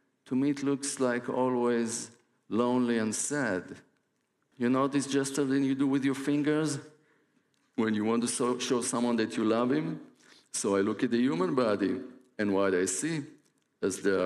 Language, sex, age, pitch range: Chinese, male, 50-69, 105-140 Hz